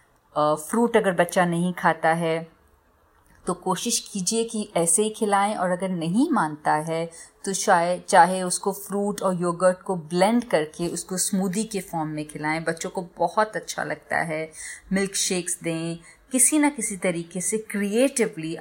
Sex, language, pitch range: female, Hindi, 165-200 Hz